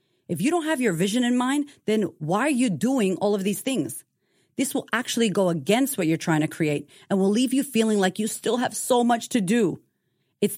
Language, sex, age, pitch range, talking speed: English, female, 30-49, 170-230 Hz, 235 wpm